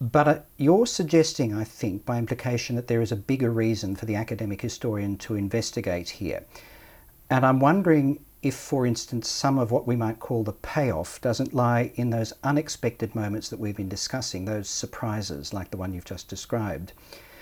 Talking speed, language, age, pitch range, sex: 180 wpm, English, 50-69, 105-135 Hz, male